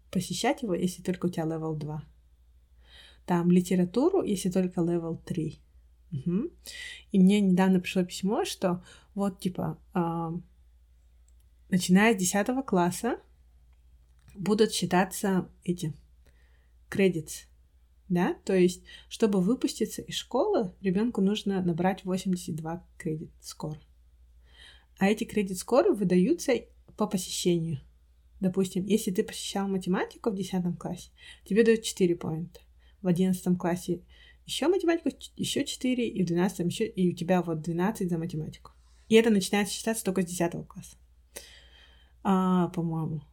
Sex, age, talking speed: female, 30-49, 125 wpm